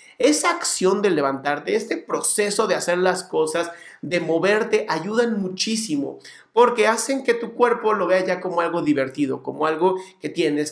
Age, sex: 40-59, male